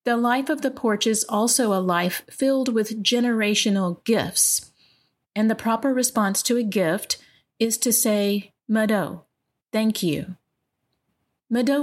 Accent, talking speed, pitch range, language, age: American, 135 wpm, 190-240 Hz, English, 30-49